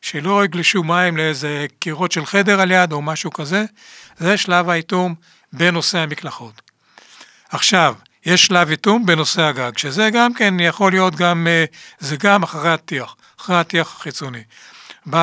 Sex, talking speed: male, 145 wpm